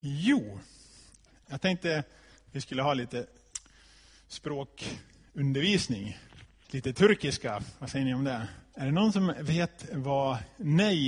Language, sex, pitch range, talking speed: Swedish, male, 120-150 Hz, 125 wpm